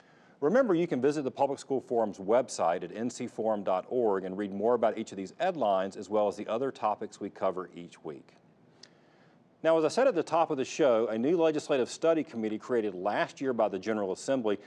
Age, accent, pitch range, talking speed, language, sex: 40-59, American, 95-125 Hz, 210 wpm, English, male